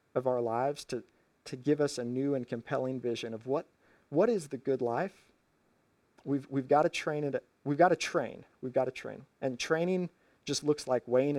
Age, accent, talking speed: 40-59, American, 185 wpm